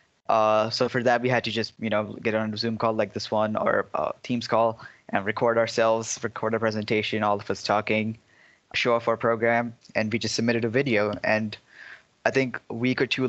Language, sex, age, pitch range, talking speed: English, male, 10-29, 110-120 Hz, 220 wpm